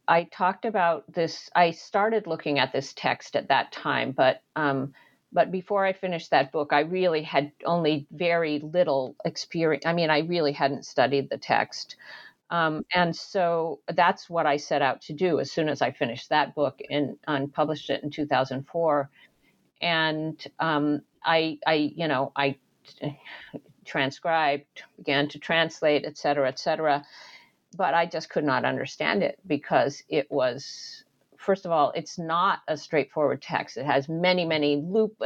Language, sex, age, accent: English, female, 50-69, American